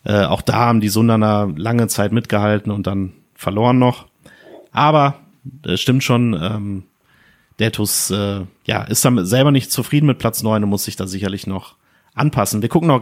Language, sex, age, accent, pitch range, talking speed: German, male, 30-49, German, 105-130 Hz, 185 wpm